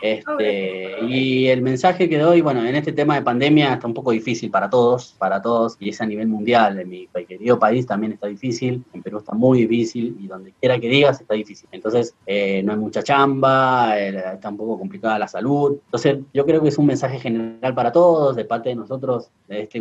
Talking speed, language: 220 wpm, Spanish